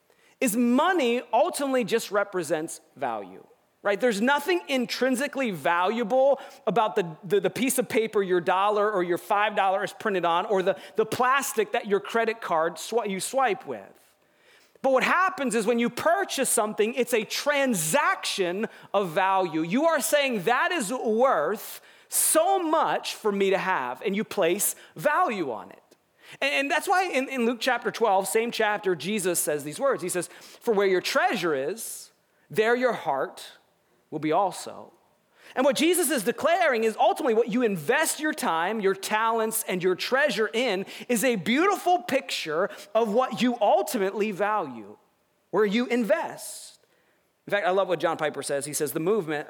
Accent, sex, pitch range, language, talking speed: American, male, 185-260 Hz, English, 165 wpm